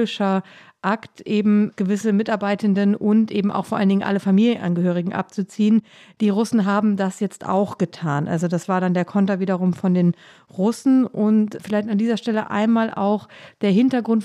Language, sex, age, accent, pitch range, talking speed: German, female, 50-69, German, 200-230 Hz, 165 wpm